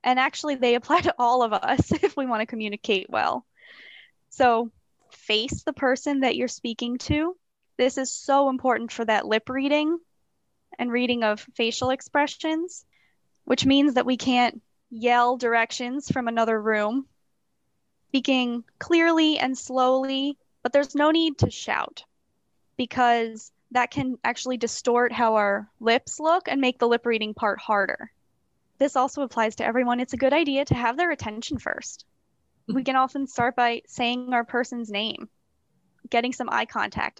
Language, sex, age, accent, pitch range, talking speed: English, female, 20-39, American, 230-270 Hz, 155 wpm